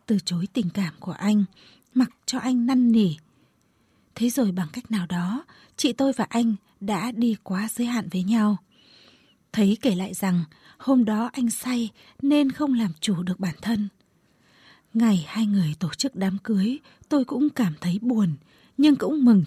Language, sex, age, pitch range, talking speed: Vietnamese, female, 20-39, 200-255 Hz, 180 wpm